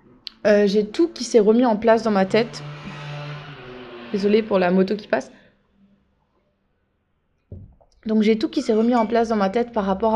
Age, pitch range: 20-39, 195-240 Hz